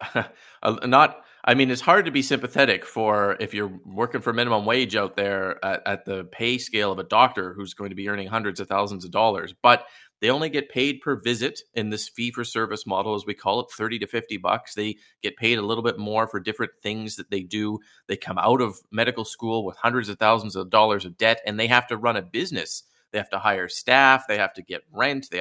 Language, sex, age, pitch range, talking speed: English, male, 30-49, 105-120 Hz, 240 wpm